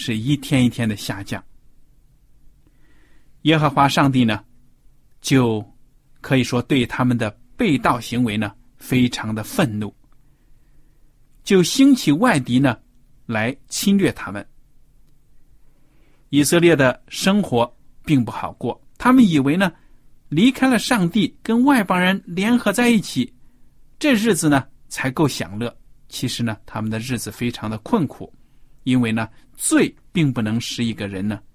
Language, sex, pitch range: Chinese, male, 125-155 Hz